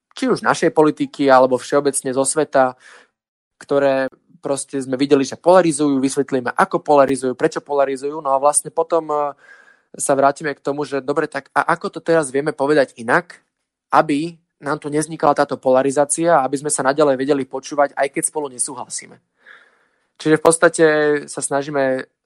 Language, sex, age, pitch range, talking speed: Slovak, male, 20-39, 130-150 Hz, 155 wpm